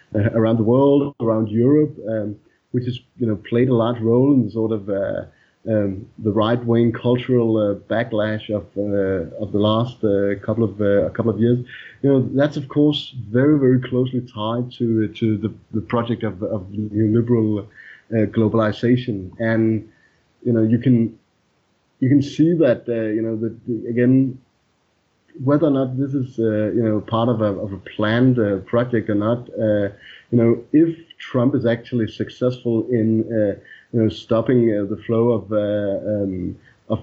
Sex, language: male, English